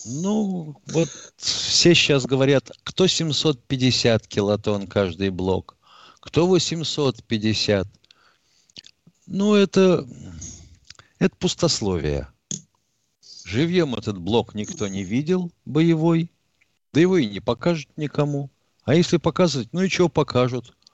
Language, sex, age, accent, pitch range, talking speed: Russian, male, 50-69, native, 105-155 Hz, 105 wpm